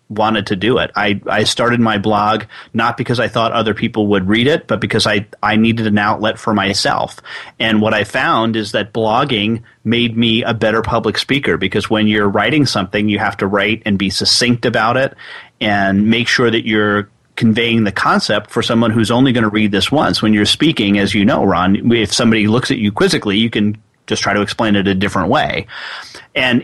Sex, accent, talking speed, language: male, American, 215 wpm, English